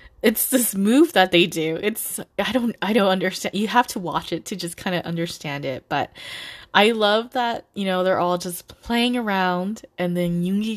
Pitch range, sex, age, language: 175-225 Hz, female, 20-39, English